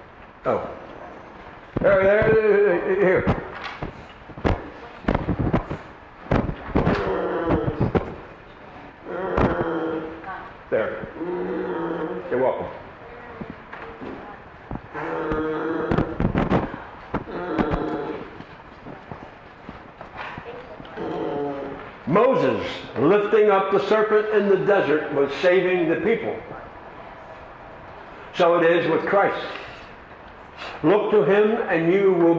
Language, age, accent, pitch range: English, 50-69, American, 160-235 Hz